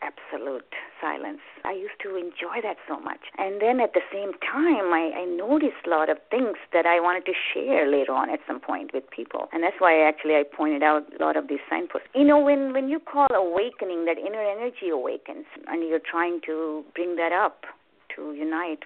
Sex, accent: female, Indian